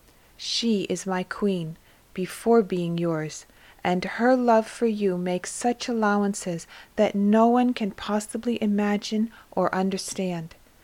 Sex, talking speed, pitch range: female, 125 wpm, 180-210 Hz